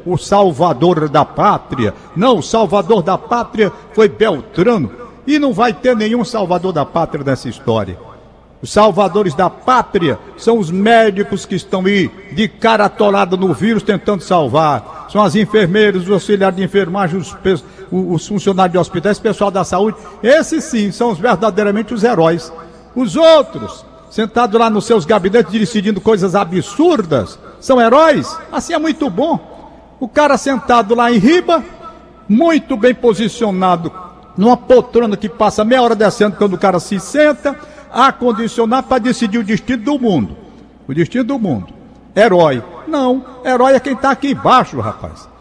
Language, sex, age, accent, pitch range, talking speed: Portuguese, male, 60-79, Brazilian, 190-245 Hz, 160 wpm